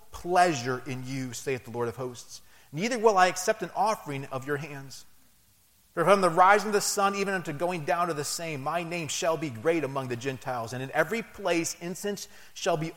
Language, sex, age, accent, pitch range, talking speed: English, male, 30-49, American, 105-180 Hz, 215 wpm